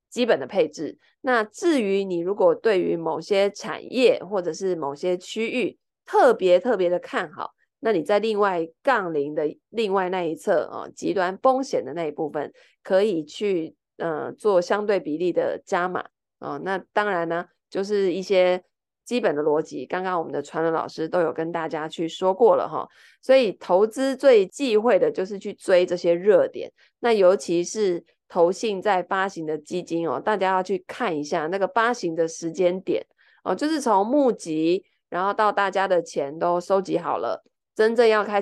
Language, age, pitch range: Chinese, 20-39, 170-230 Hz